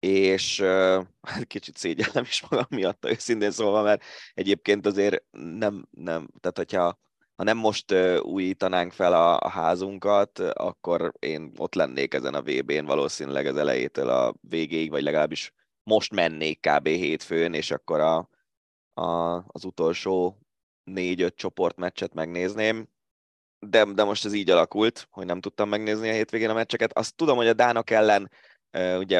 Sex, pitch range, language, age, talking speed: male, 90-115 Hz, Hungarian, 20-39, 150 wpm